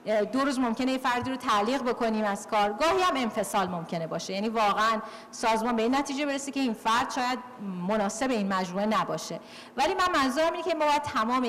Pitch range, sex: 205-280 Hz, female